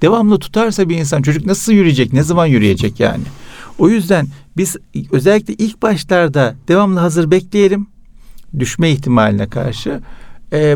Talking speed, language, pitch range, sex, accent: 135 wpm, Turkish, 115-160 Hz, male, native